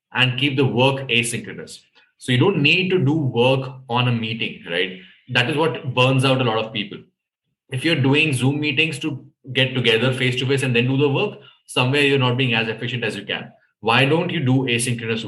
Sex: male